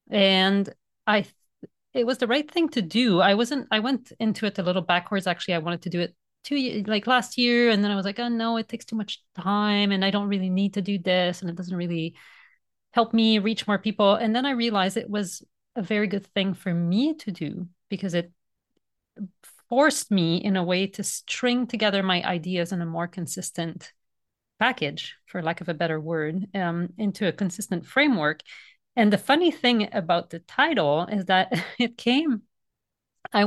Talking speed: 200 wpm